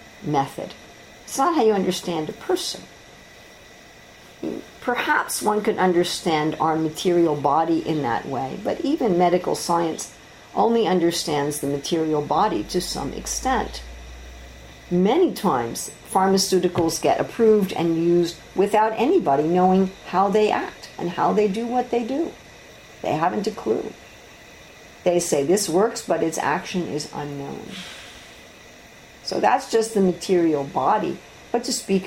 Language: English